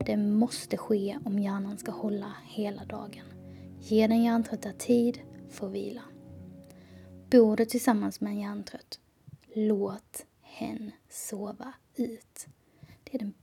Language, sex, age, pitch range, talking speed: Swedish, female, 20-39, 210-250 Hz, 125 wpm